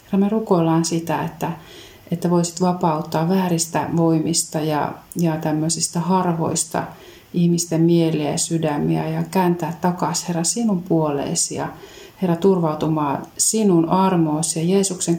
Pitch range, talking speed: 160-175 Hz, 125 wpm